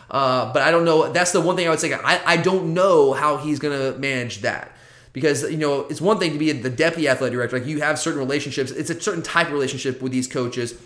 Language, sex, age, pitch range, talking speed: English, male, 20-39, 130-170 Hz, 265 wpm